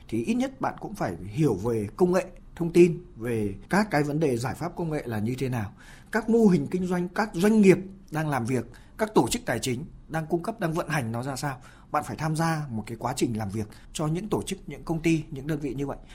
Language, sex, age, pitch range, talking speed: Vietnamese, male, 20-39, 125-175 Hz, 270 wpm